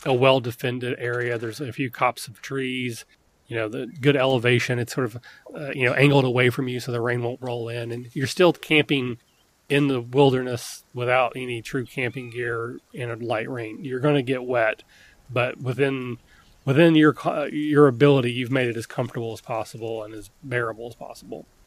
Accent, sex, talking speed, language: American, male, 195 wpm, English